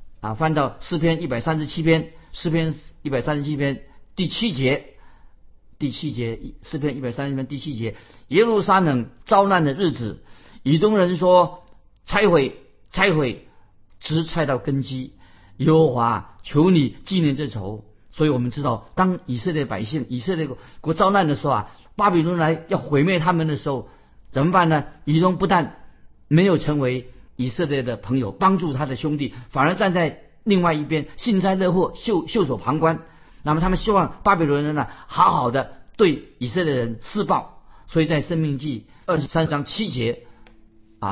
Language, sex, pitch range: Chinese, male, 125-170 Hz